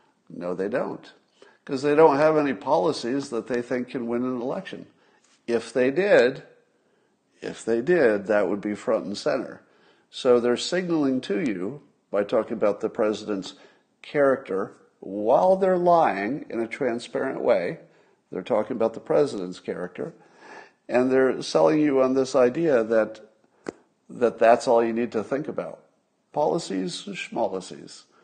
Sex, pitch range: male, 105-130 Hz